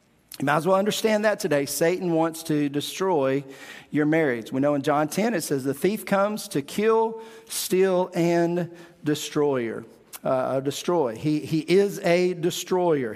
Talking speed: 160 wpm